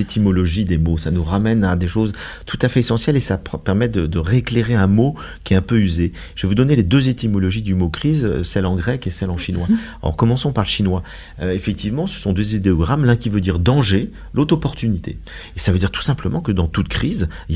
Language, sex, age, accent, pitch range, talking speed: French, male, 40-59, French, 90-125 Hz, 250 wpm